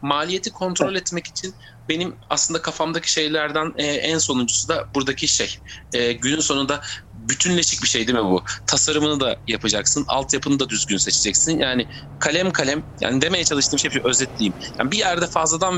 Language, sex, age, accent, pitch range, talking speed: Turkish, male, 40-59, native, 120-165 Hz, 150 wpm